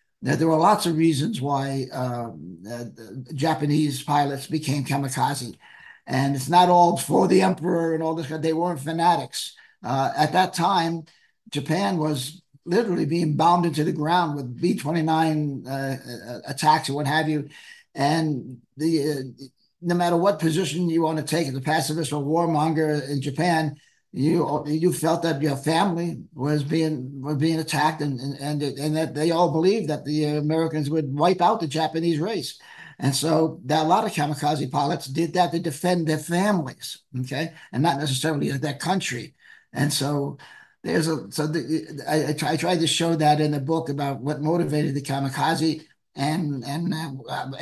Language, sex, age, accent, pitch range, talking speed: English, male, 50-69, American, 145-165 Hz, 170 wpm